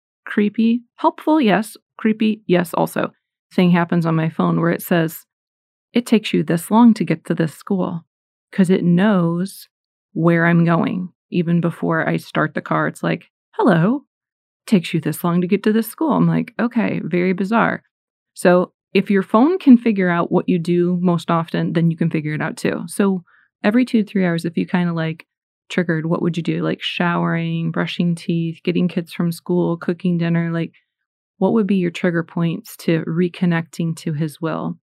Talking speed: 190 wpm